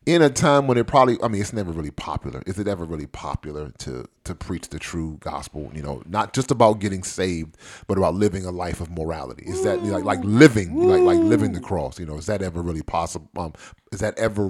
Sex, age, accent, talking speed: male, 30-49, American, 255 wpm